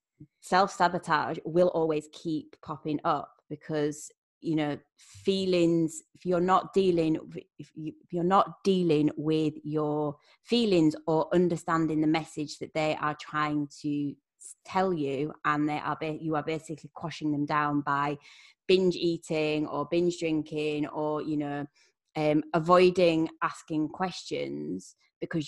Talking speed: 140 wpm